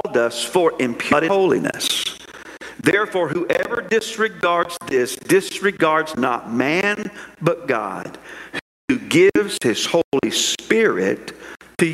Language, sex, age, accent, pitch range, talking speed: English, male, 50-69, American, 160-205 Hz, 90 wpm